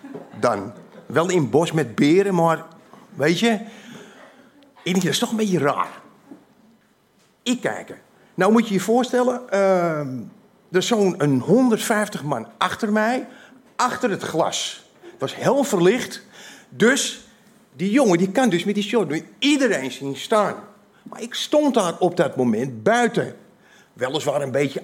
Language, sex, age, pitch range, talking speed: Dutch, male, 50-69, 155-225 Hz, 145 wpm